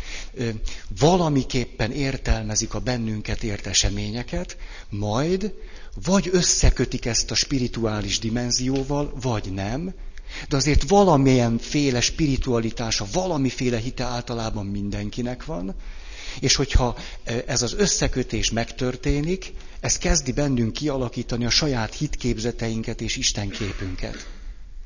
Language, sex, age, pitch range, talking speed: Hungarian, male, 60-79, 95-130 Hz, 95 wpm